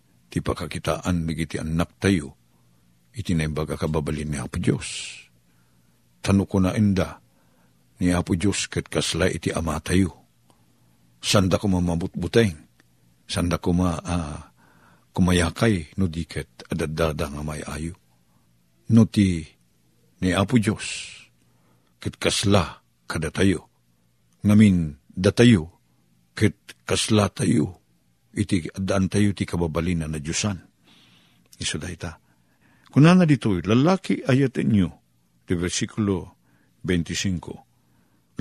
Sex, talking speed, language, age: male, 110 wpm, Filipino, 50-69